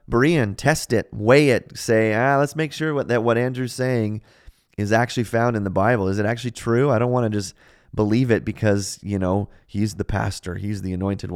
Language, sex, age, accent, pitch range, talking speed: English, male, 30-49, American, 95-125 Hz, 210 wpm